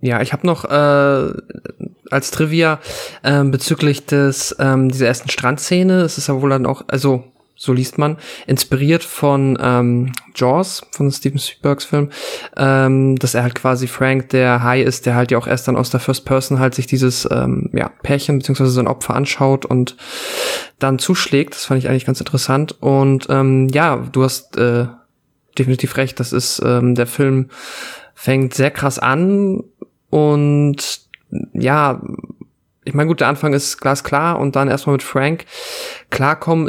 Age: 20-39